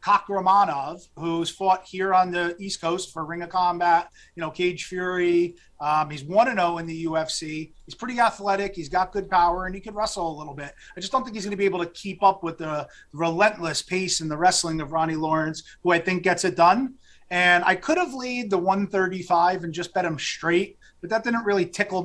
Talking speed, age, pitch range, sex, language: 220 wpm, 30-49, 165-200 Hz, male, English